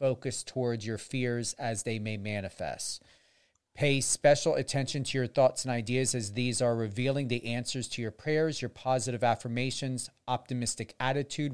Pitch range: 115-135 Hz